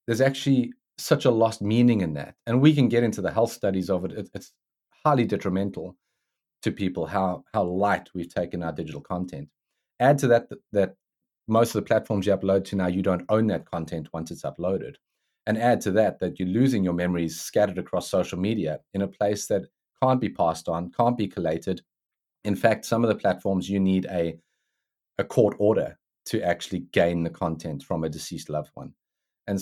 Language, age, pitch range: English, 30-49, 90-110 Hz